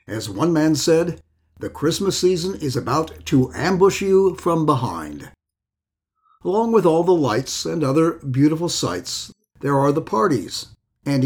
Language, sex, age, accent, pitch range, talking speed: English, male, 60-79, American, 125-175 Hz, 150 wpm